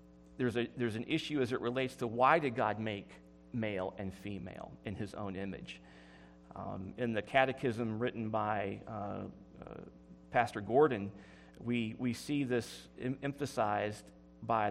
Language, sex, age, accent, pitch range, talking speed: English, male, 40-59, American, 100-150 Hz, 150 wpm